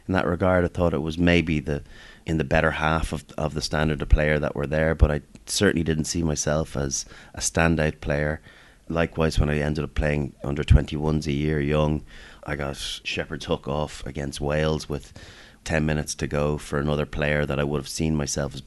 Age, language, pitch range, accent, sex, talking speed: 30-49, English, 70-80 Hz, Irish, male, 210 wpm